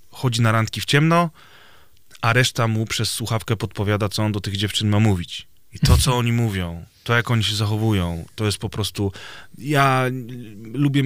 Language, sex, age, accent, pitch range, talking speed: Polish, male, 30-49, native, 105-125 Hz, 185 wpm